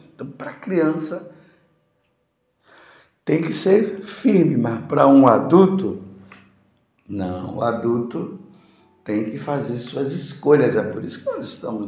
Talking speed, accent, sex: 130 wpm, Brazilian, male